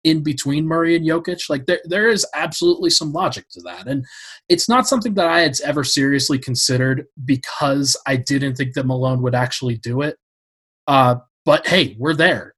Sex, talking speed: male, 185 wpm